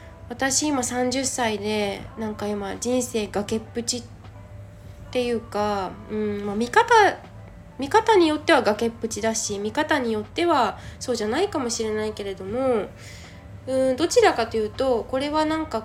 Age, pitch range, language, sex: 20-39, 195-255 Hz, Japanese, female